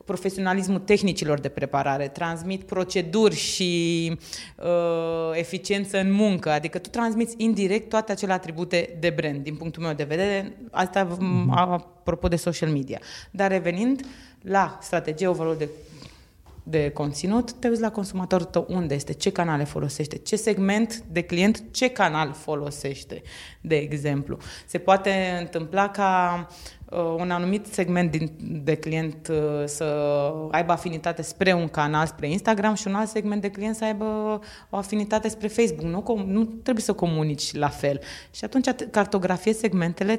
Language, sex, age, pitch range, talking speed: Romanian, female, 30-49, 160-200 Hz, 145 wpm